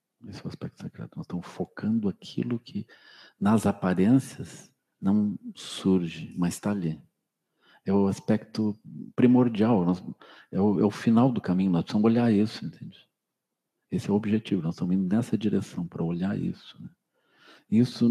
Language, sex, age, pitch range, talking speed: Portuguese, male, 50-69, 90-115 Hz, 160 wpm